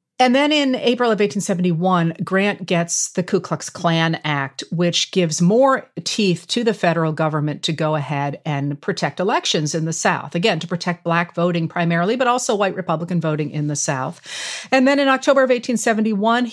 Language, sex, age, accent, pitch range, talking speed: English, female, 40-59, American, 165-215 Hz, 180 wpm